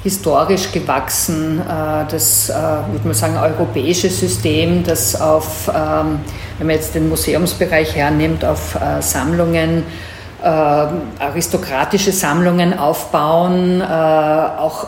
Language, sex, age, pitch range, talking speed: German, female, 50-69, 150-170 Hz, 90 wpm